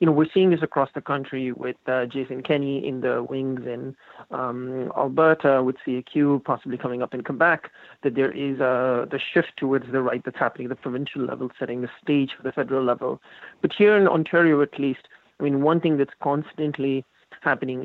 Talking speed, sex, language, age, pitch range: 200 wpm, male, English, 30-49, 130-150 Hz